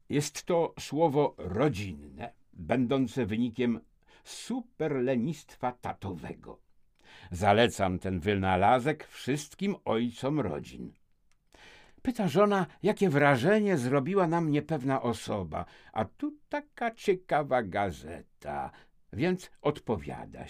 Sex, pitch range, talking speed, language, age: male, 120-200 Hz, 90 wpm, Polish, 60-79